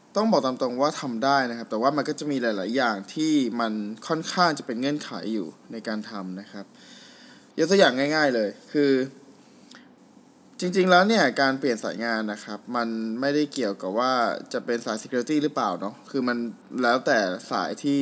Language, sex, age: Thai, male, 20-39